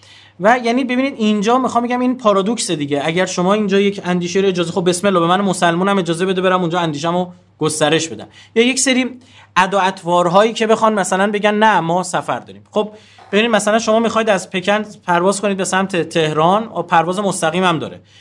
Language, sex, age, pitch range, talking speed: Persian, male, 30-49, 160-215 Hz, 190 wpm